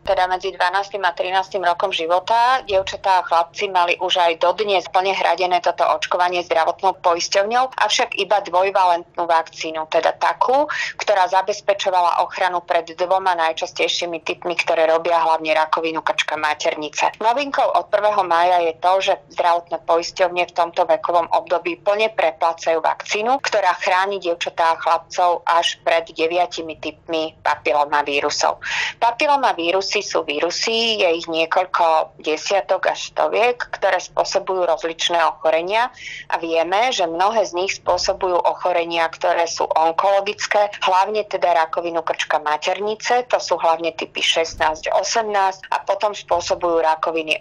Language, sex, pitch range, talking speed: Slovak, female, 165-200 Hz, 135 wpm